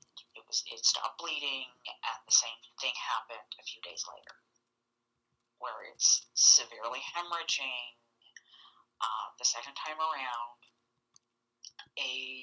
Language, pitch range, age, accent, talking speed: English, 115-135 Hz, 40-59, American, 105 wpm